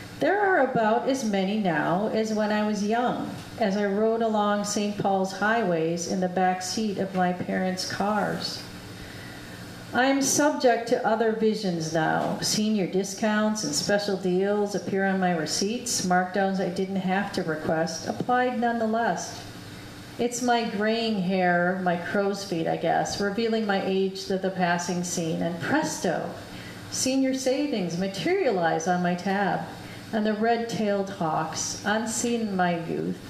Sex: female